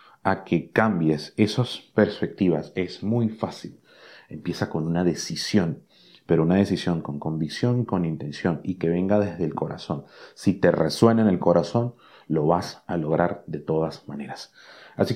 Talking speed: 155 wpm